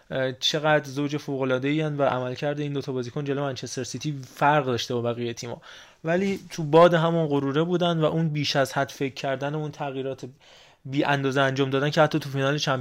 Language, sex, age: Persian, male, 20-39